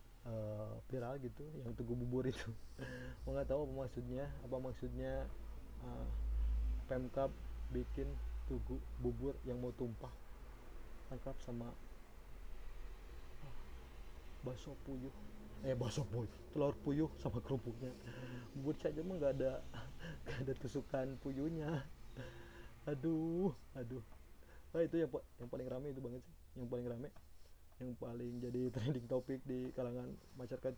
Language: Indonesian